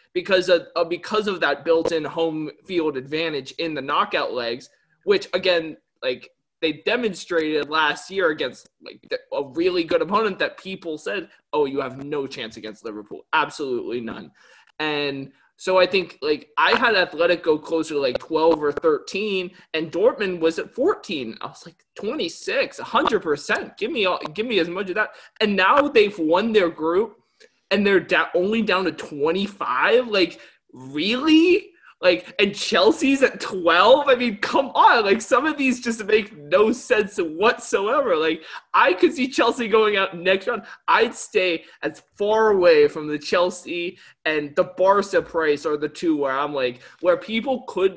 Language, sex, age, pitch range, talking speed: English, male, 20-39, 160-260 Hz, 170 wpm